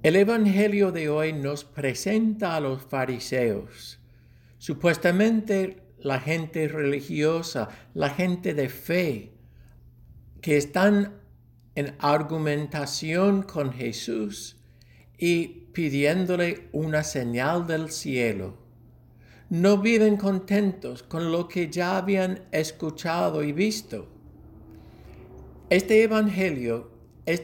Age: 60-79